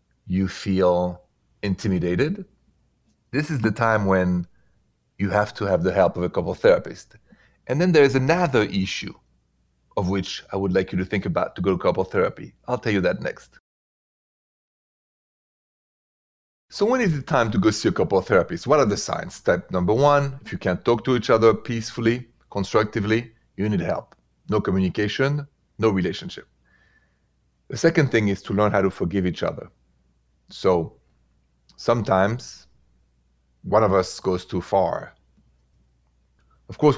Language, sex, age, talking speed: English, male, 40-59, 160 wpm